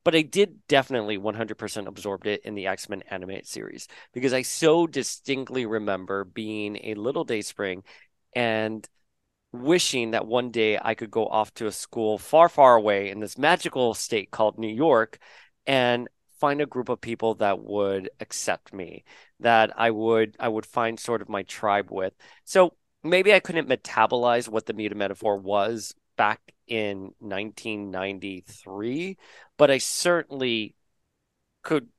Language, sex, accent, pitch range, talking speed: English, male, American, 105-135 Hz, 155 wpm